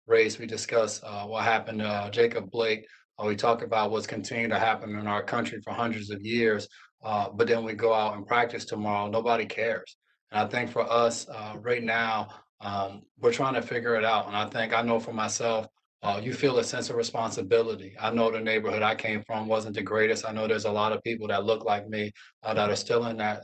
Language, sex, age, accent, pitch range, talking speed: English, male, 30-49, American, 110-120 Hz, 235 wpm